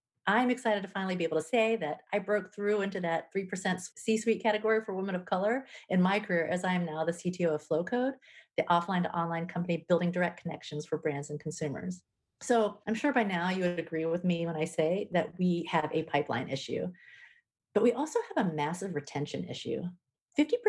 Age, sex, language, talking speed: 40-59, female, English, 205 wpm